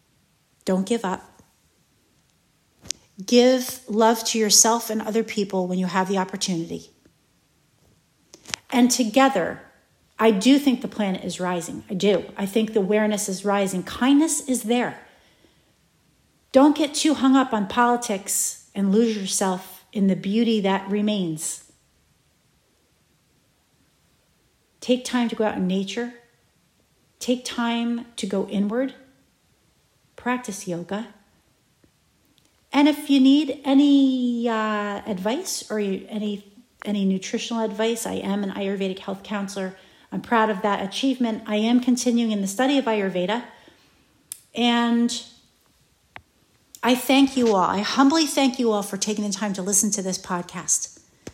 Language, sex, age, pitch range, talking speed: English, female, 40-59, 195-240 Hz, 135 wpm